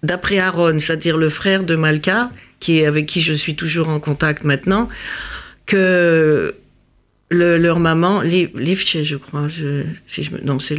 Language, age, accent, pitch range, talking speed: French, 50-69, French, 155-190 Hz, 165 wpm